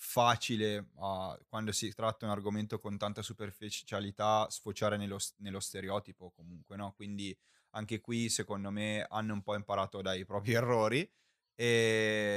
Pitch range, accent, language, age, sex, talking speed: 100-115 Hz, native, Italian, 20-39, male, 140 wpm